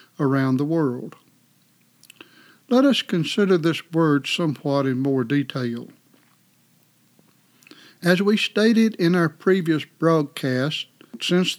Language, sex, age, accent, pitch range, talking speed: English, male, 60-79, American, 145-175 Hz, 105 wpm